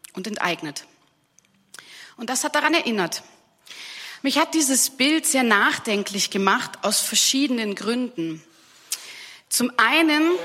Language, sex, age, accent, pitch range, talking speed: German, female, 30-49, German, 205-260 Hz, 110 wpm